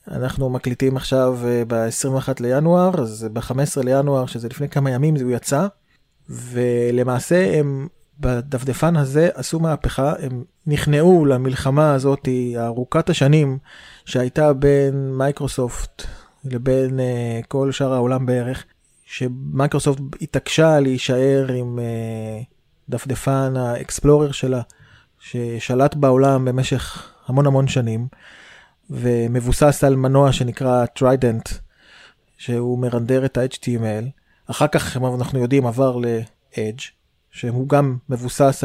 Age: 20-39